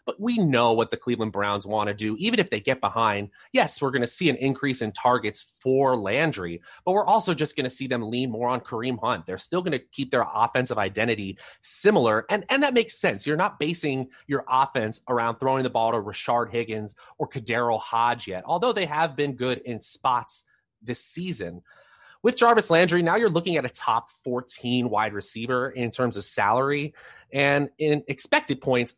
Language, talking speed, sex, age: English, 205 wpm, male, 30-49